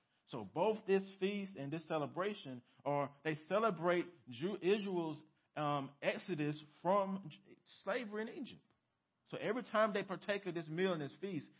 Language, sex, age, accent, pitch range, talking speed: English, male, 40-59, American, 125-170 Hz, 145 wpm